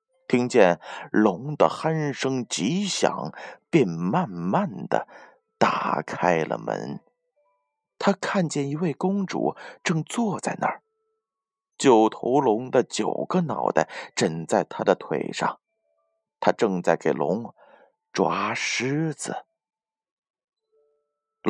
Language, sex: Chinese, male